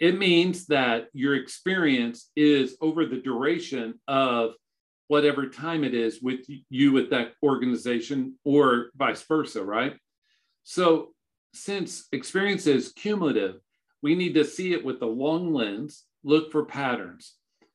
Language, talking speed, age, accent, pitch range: English, 135 wpm, 50-69, American, 125-165 Hz